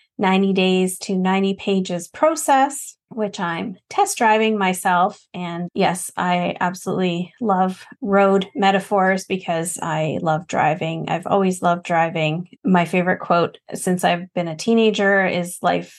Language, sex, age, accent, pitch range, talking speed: English, female, 20-39, American, 180-215 Hz, 135 wpm